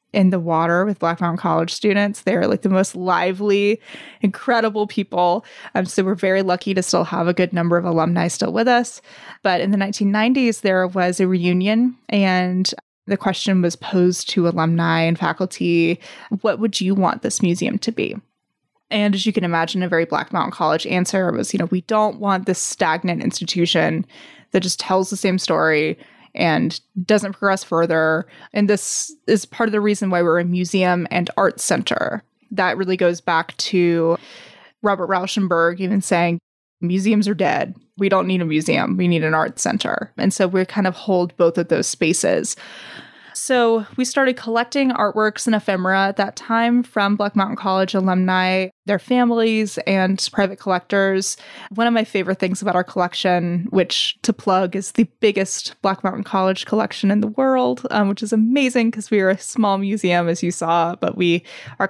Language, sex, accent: English, female, American